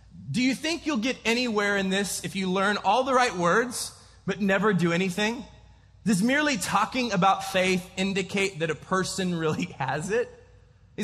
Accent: American